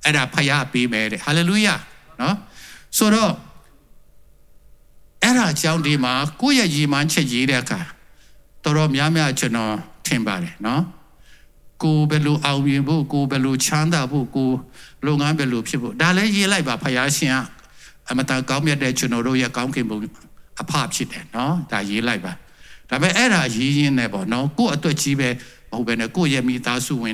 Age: 60-79